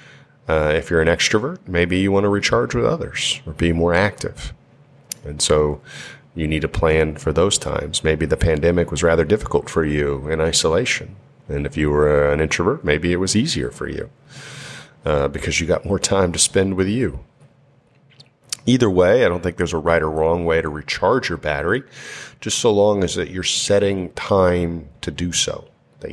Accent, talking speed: American, 195 wpm